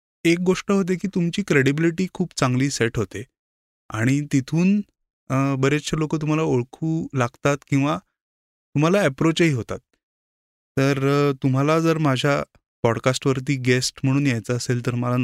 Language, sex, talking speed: Marathi, male, 95 wpm